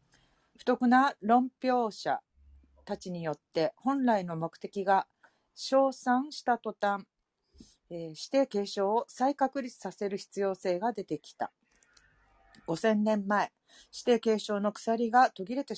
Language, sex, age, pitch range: Japanese, female, 40-59, 180-245 Hz